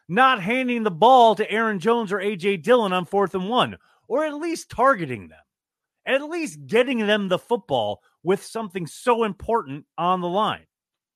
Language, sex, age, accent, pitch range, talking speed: English, male, 30-49, American, 160-240 Hz, 170 wpm